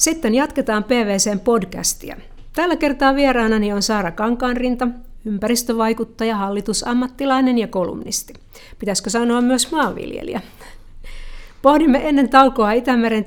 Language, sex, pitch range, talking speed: Finnish, female, 210-250 Hz, 100 wpm